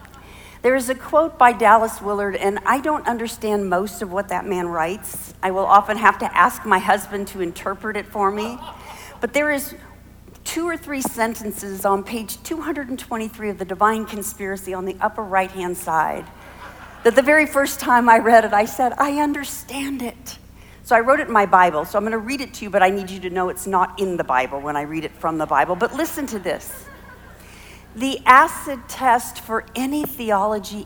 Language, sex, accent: English, female, American